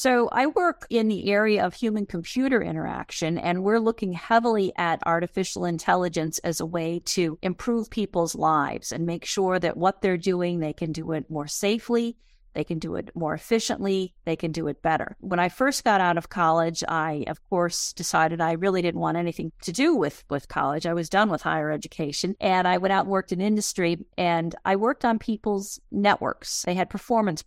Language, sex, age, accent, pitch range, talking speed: English, female, 50-69, American, 170-210 Hz, 200 wpm